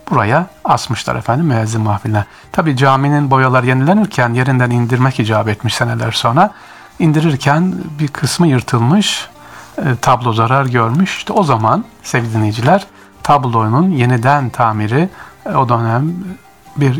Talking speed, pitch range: 115 wpm, 110-155 Hz